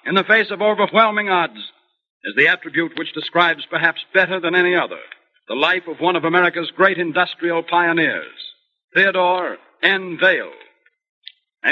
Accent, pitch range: American, 175-205 Hz